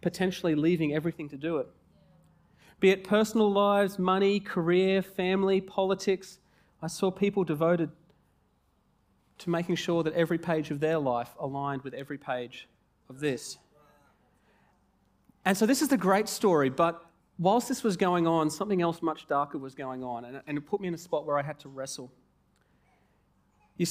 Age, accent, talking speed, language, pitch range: 40-59, Australian, 165 wpm, English, 135-180 Hz